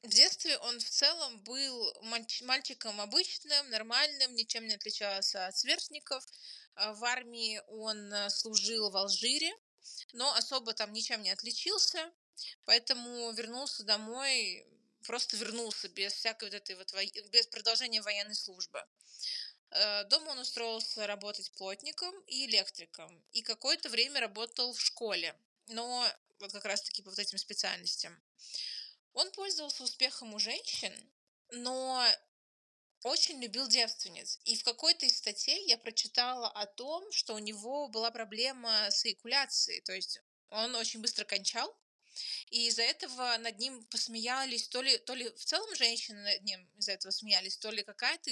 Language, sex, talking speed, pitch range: Russian, female, 140 wpm, 210-260 Hz